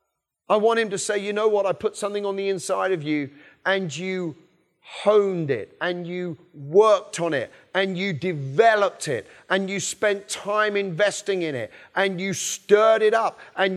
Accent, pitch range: British, 155-210 Hz